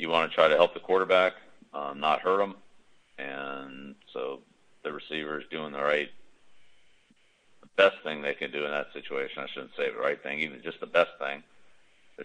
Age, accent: 50-69, American